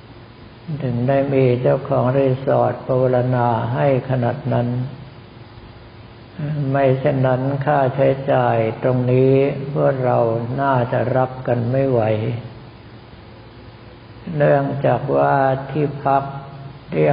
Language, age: Thai, 60-79